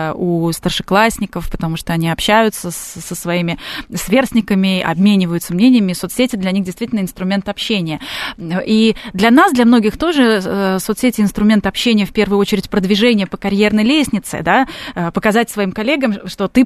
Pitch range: 190-245 Hz